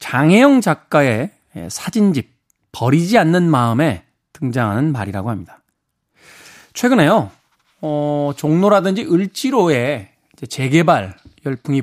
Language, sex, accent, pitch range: Korean, male, native, 130-175 Hz